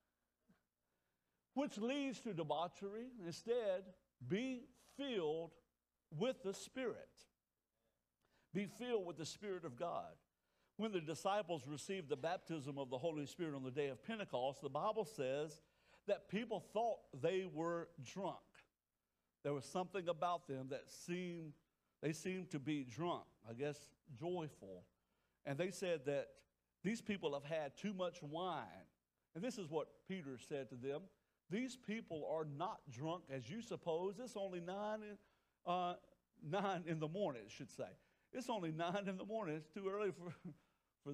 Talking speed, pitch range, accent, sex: 155 wpm, 150-205 Hz, American, male